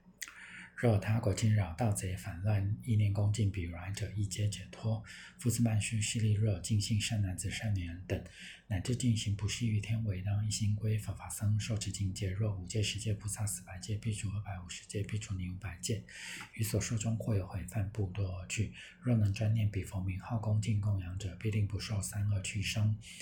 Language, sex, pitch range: English, male, 95-110 Hz